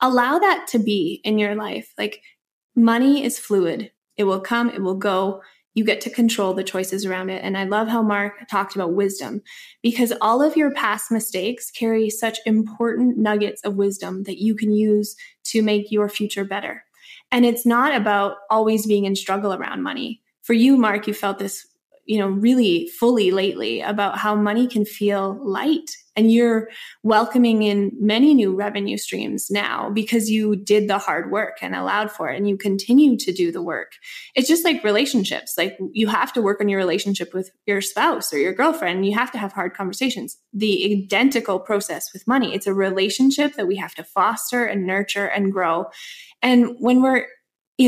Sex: female